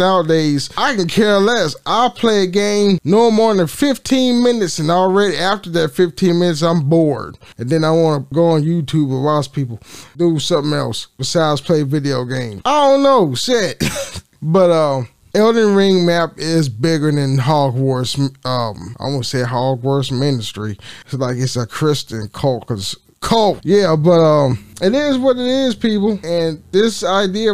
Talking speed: 175 wpm